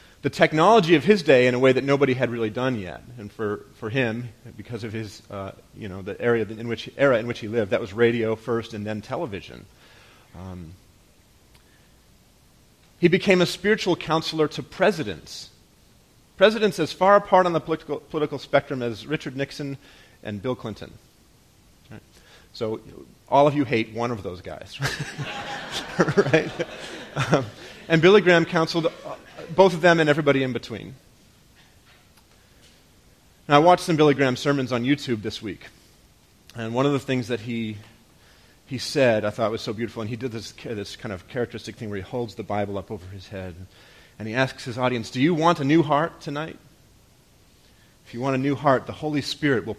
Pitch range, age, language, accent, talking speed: 110-150 Hz, 40-59, English, American, 180 wpm